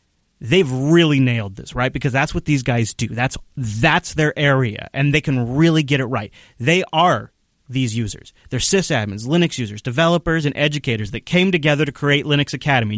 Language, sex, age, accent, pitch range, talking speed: English, male, 30-49, American, 120-150 Hz, 185 wpm